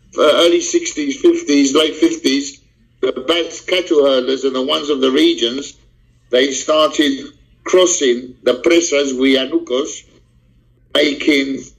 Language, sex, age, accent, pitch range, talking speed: English, male, 50-69, British, 135-175 Hz, 115 wpm